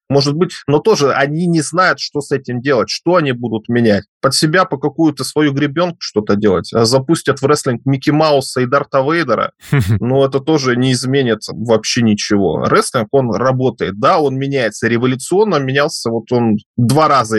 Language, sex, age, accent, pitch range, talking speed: Russian, male, 20-39, native, 110-145 Hz, 175 wpm